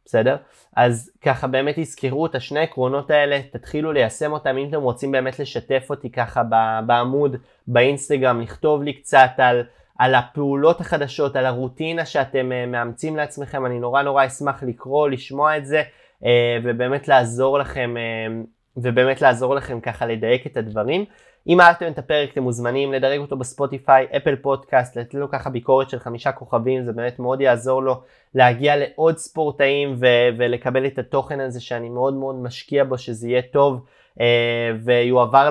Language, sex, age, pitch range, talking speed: Hebrew, male, 20-39, 120-145 Hz, 155 wpm